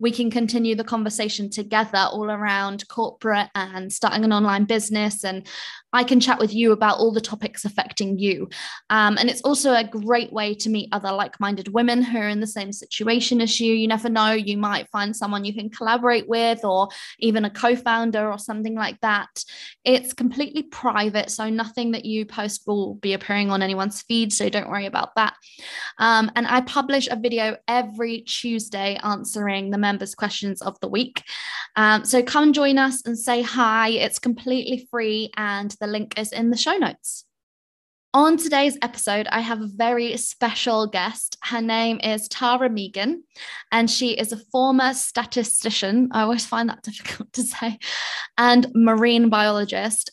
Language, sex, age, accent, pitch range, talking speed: English, female, 20-39, British, 205-240 Hz, 175 wpm